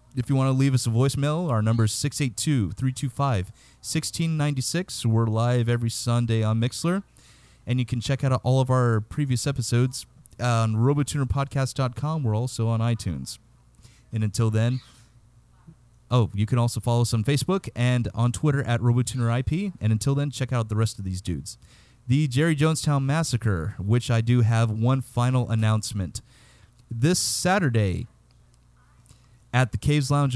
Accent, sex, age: American, male, 30-49